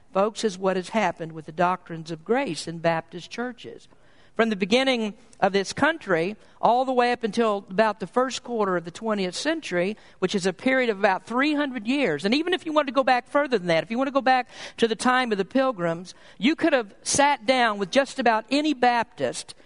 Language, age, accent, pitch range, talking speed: English, 50-69, American, 200-260 Hz, 225 wpm